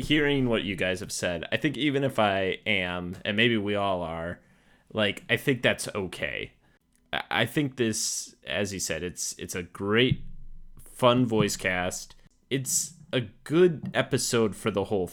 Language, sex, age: English, male, 20-39